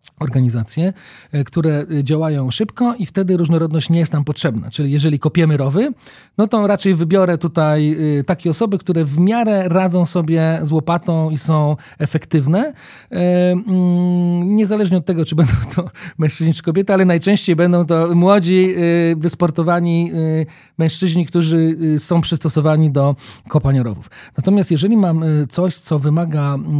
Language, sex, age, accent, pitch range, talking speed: Polish, male, 40-59, native, 145-180 Hz, 135 wpm